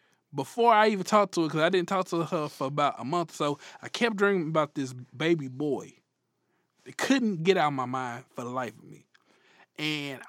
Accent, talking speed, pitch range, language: American, 220 wpm, 145-185 Hz, English